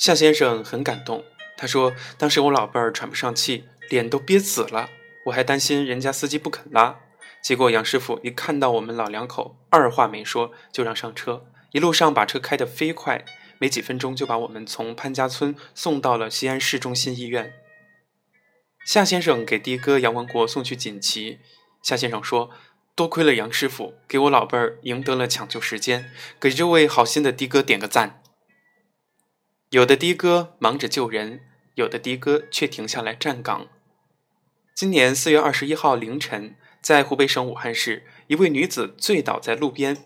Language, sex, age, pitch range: Chinese, male, 20-39, 120-160 Hz